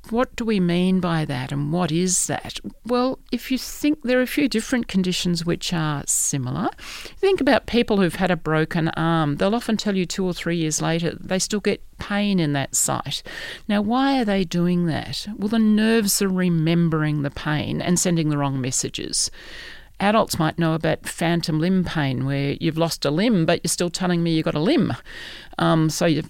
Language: English